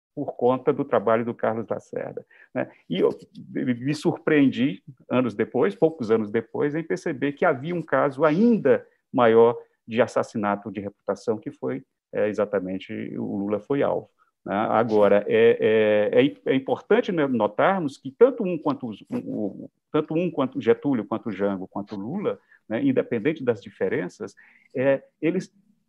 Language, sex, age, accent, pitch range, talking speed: Portuguese, male, 50-69, Brazilian, 130-195 Hz, 145 wpm